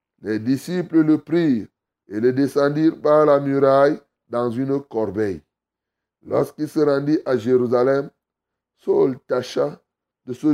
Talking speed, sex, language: 125 wpm, male, French